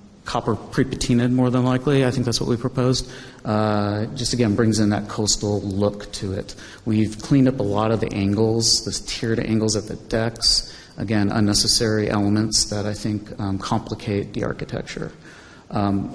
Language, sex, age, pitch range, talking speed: English, male, 40-59, 100-115 Hz, 170 wpm